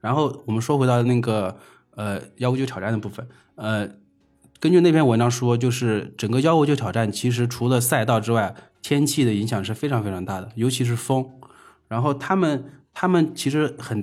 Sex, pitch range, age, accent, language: male, 110-135 Hz, 20-39, native, Chinese